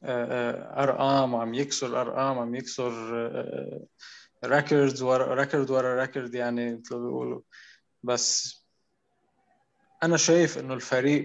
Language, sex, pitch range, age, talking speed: Arabic, male, 125-150 Hz, 20-39, 100 wpm